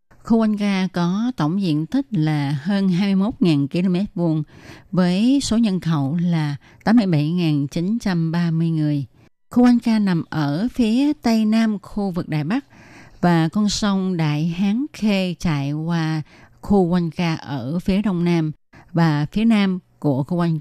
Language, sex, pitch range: Vietnamese, female, 150-195 Hz